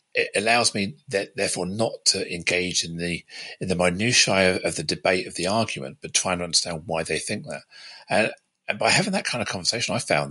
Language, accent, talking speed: English, British, 220 wpm